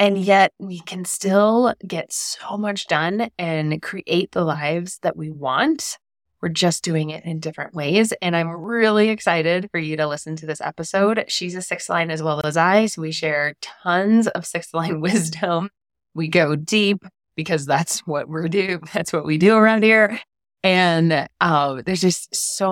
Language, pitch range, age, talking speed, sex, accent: English, 155-205 Hz, 20-39, 180 wpm, female, American